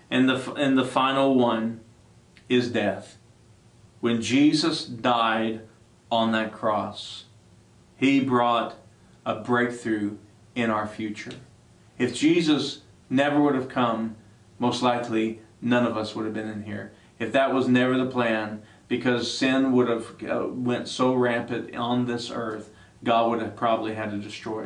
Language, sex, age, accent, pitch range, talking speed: English, male, 40-59, American, 110-125 Hz, 145 wpm